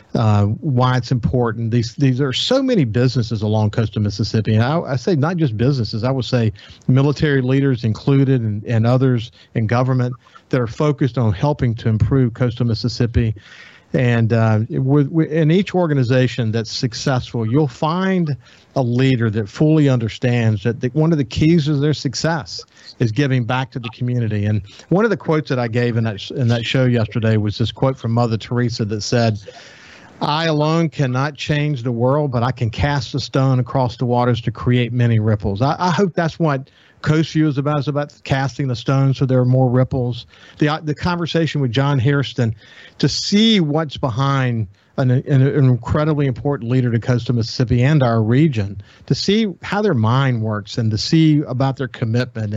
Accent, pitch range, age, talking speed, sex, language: American, 115-145 Hz, 50-69, 185 wpm, male, English